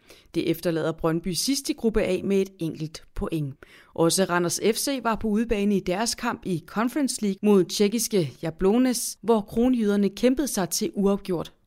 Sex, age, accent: female, 30-49, native